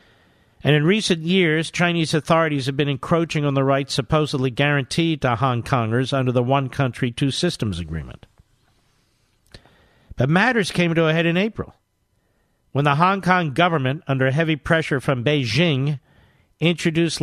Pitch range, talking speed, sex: 120-155 Hz, 150 wpm, male